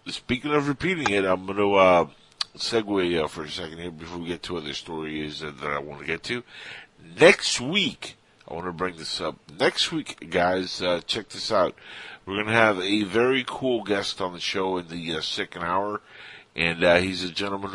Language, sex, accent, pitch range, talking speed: English, male, American, 85-105 Hz, 210 wpm